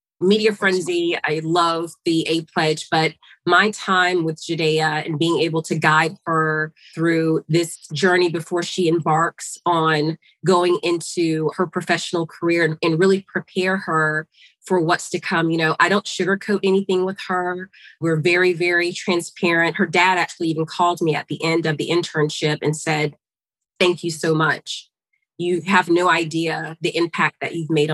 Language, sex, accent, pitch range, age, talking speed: English, female, American, 160-185 Hz, 30-49, 165 wpm